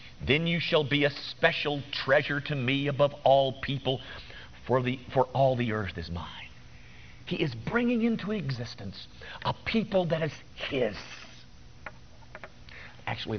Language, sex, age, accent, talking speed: English, male, 50-69, American, 140 wpm